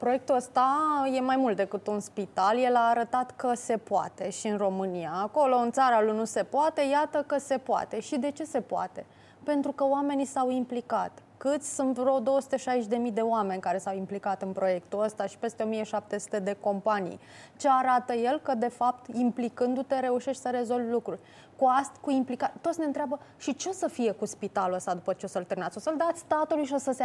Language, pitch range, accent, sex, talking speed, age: Romanian, 220-275 Hz, native, female, 205 wpm, 20-39